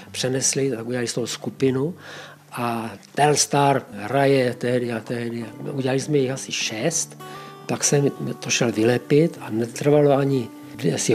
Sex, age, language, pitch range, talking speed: male, 50-69, Czech, 120-155 Hz, 145 wpm